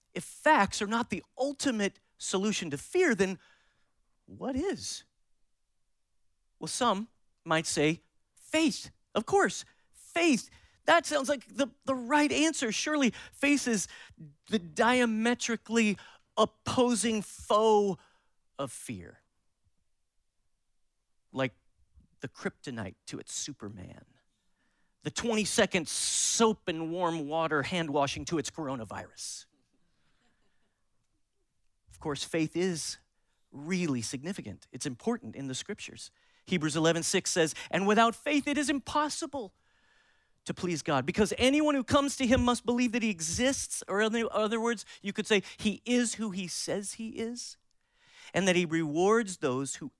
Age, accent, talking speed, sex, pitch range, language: 40-59, American, 130 wpm, male, 155-240 Hz, English